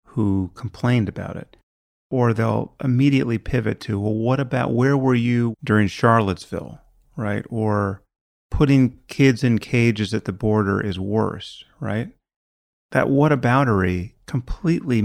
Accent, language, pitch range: American, English, 95-125 Hz